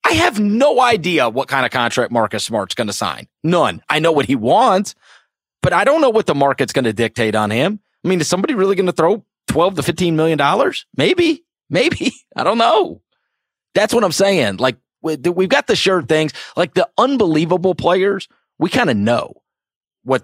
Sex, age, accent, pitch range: male, 30-49, American, 115-185 Hz